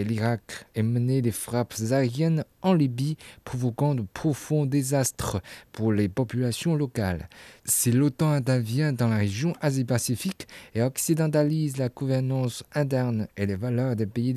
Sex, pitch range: male, 110-140 Hz